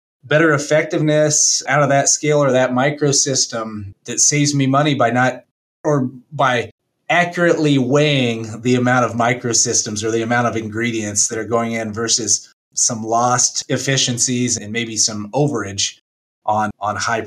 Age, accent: 30-49, American